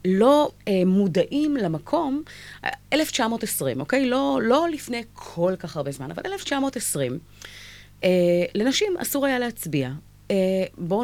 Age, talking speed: 30-49, 120 wpm